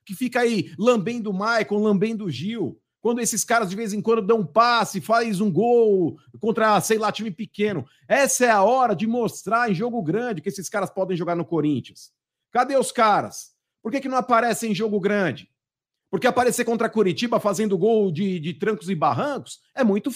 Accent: Brazilian